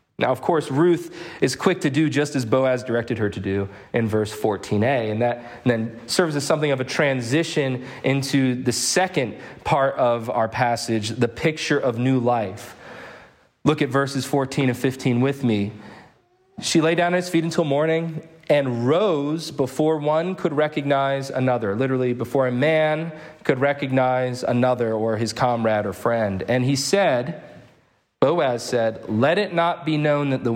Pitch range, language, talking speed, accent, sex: 110-150 Hz, English, 170 wpm, American, male